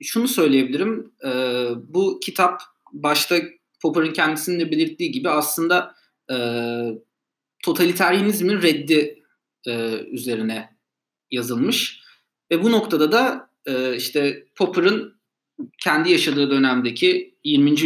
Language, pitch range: Turkish, 120-205 Hz